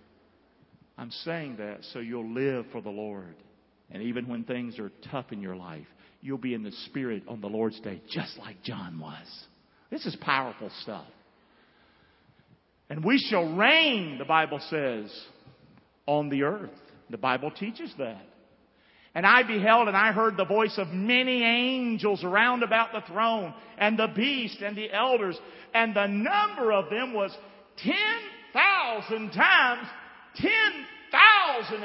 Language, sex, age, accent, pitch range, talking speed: English, male, 50-69, American, 155-230 Hz, 150 wpm